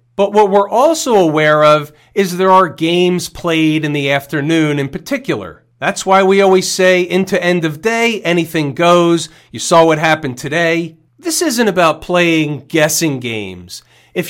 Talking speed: 165 wpm